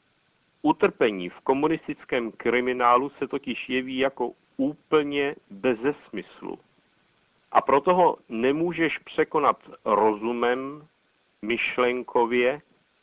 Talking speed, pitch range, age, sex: 80 wpm, 120-150 Hz, 60-79, male